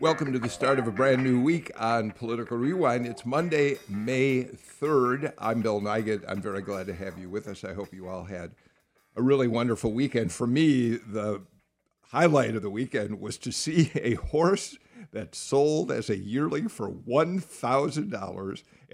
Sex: male